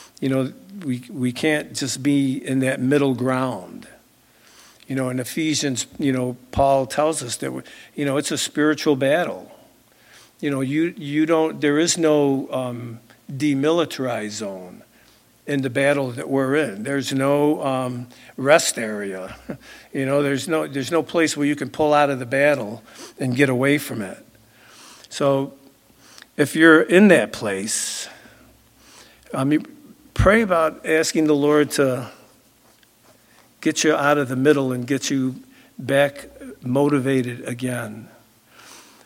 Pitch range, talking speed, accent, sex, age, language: 130-150 Hz, 150 wpm, American, male, 60-79, English